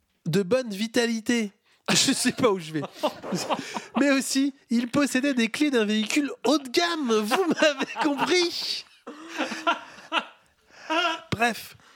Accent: French